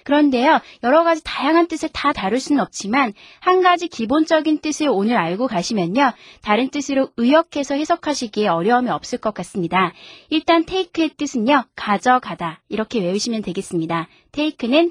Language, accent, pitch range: Korean, native, 210-305 Hz